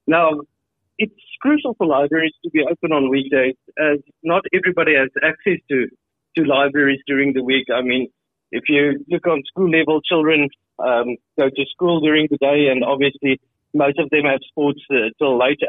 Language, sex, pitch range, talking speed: English, male, 135-165 Hz, 180 wpm